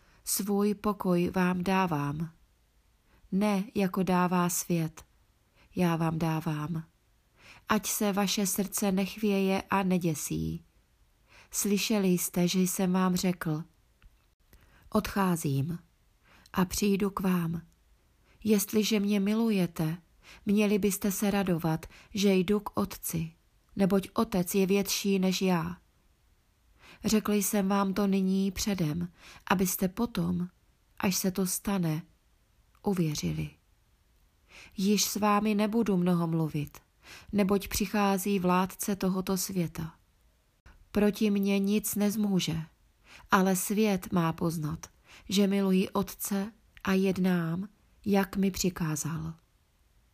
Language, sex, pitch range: Czech, female, 165-205 Hz